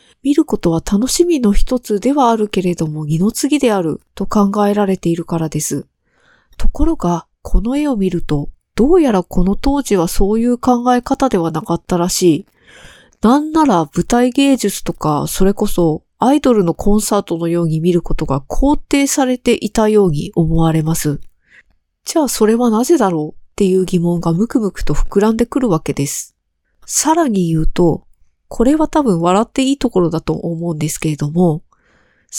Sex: female